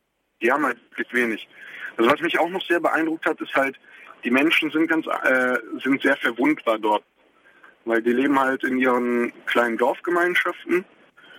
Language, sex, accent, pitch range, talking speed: German, male, German, 115-140 Hz, 160 wpm